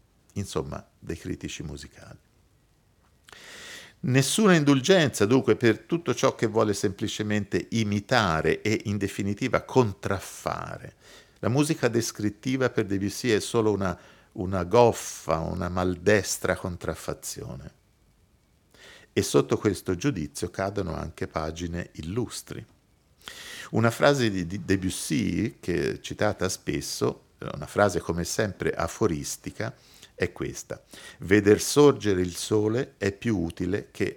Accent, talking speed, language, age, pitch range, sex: native, 105 wpm, Italian, 50-69, 90-115 Hz, male